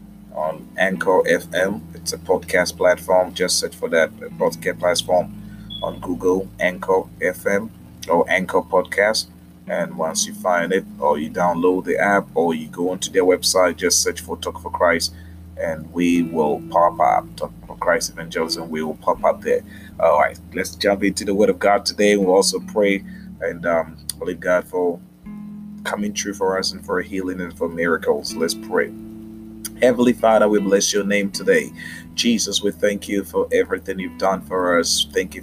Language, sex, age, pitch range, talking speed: Finnish, male, 30-49, 90-125 Hz, 180 wpm